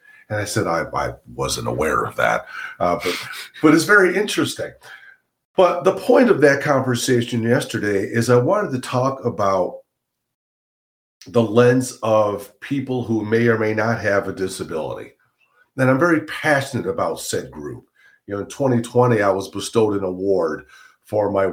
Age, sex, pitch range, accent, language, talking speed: 50-69, male, 105-130 Hz, American, English, 160 wpm